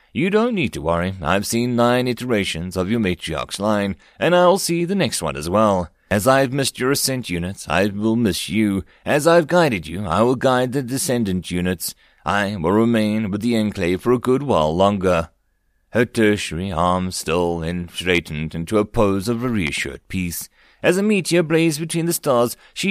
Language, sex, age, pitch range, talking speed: English, male, 30-49, 90-130 Hz, 190 wpm